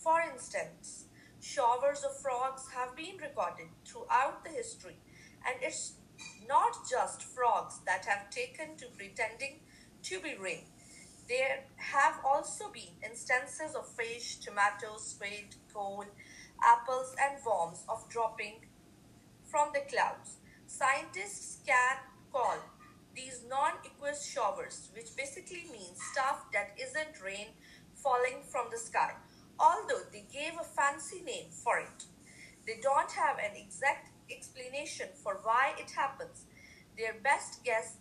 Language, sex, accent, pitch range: Chinese, female, Indian, 230-310 Hz